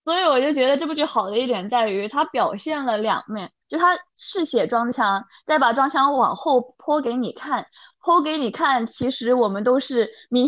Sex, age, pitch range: female, 20-39, 220-275 Hz